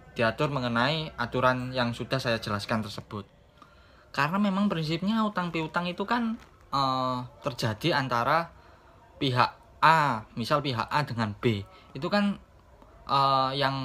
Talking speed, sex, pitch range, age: 125 wpm, male, 115-145 Hz, 10-29